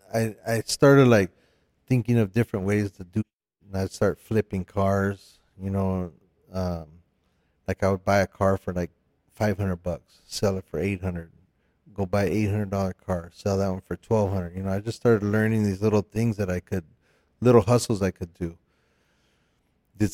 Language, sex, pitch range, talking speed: English, male, 90-105 Hz, 190 wpm